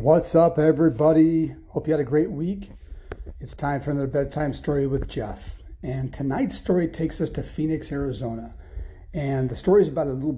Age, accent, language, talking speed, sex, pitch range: 40-59, American, English, 185 wpm, male, 120-150 Hz